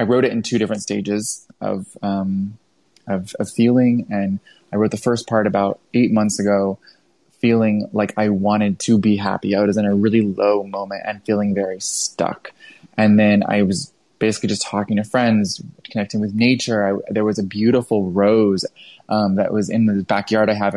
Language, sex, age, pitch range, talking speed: English, male, 20-39, 100-115 Hz, 190 wpm